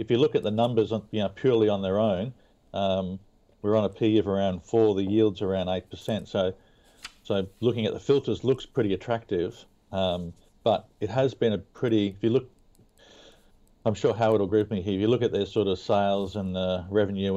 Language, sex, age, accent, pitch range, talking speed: English, male, 50-69, Australian, 95-110 Hz, 220 wpm